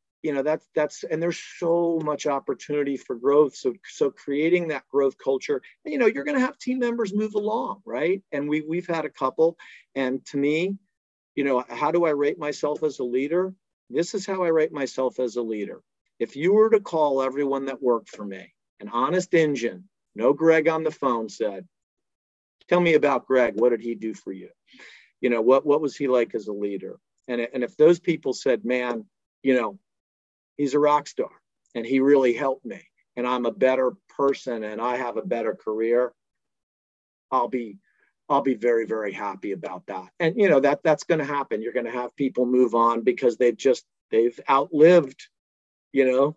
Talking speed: 200 wpm